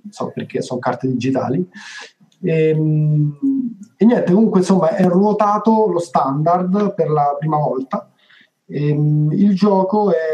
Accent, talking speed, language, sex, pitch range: native, 130 wpm, Italian, male, 145-195 Hz